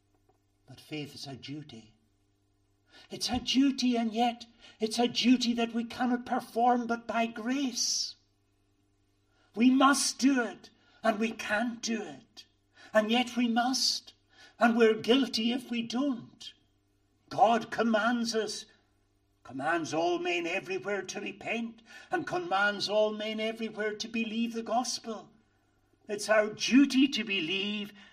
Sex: male